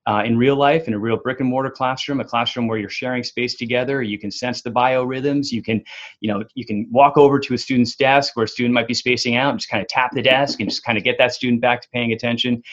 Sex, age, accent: male, 30-49, American